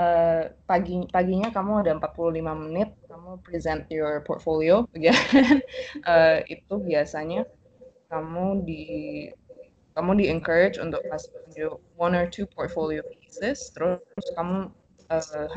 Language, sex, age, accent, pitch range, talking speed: Indonesian, female, 20-39, native, 160-205 Hz, 110 wpm